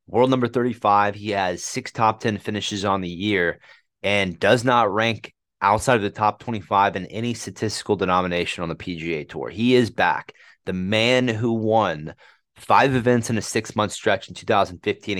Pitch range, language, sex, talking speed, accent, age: 95-115 Hz, English, male, 175 wpm, American, 30-49